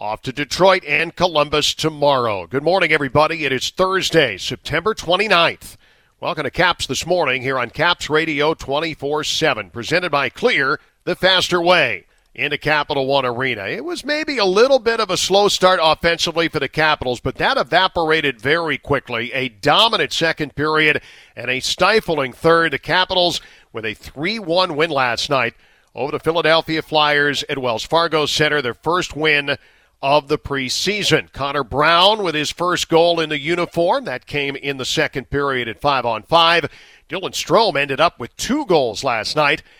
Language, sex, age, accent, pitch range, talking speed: English, male, 50-69, American, 140-175 Hz, 165 wpm